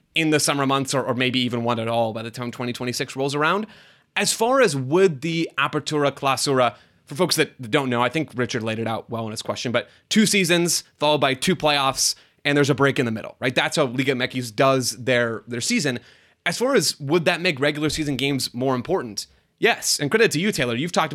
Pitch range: 125-160 Hz